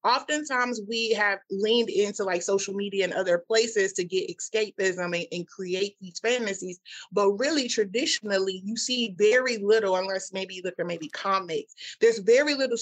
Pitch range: 185-250 Hz